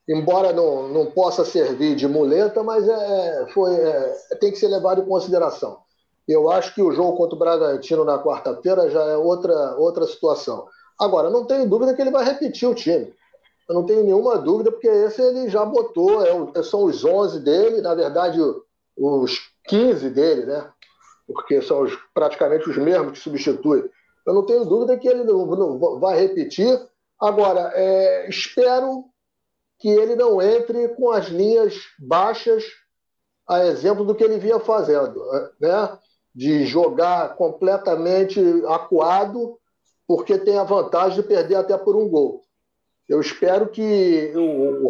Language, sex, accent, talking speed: Portuguese, male, Brazilian, 160 wpm